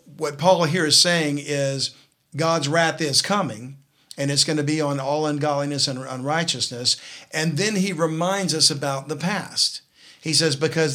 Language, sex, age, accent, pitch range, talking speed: English, male, 50-69, American, 125-155 Hz, 170 wpm